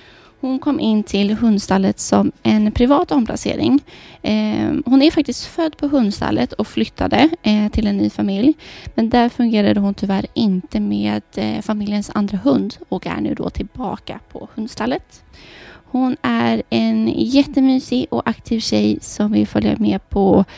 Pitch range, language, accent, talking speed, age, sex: 195-245 Hz, Swedish, native, 145 wpm, 20-39, female